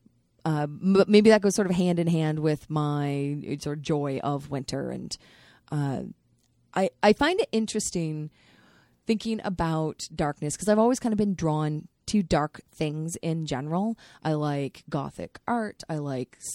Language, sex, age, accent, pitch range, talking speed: English, female, 20-39, American, 150-205 Hz, 165 wpm